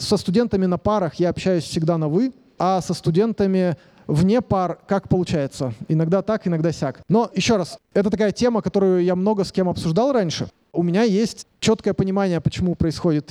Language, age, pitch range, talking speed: Russian, 30-49, 165-205 Hz, 180 wpm